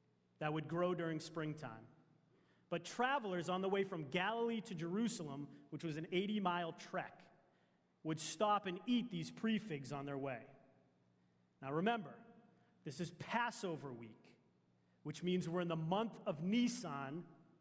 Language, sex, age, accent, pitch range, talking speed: English, male, 30-49, American, 150-220 Hz, 145 wpm